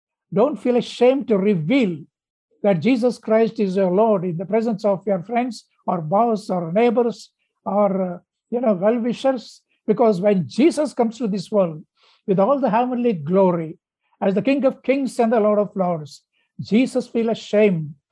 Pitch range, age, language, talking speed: 190-225 Hz, 60-79, English, 170 wpm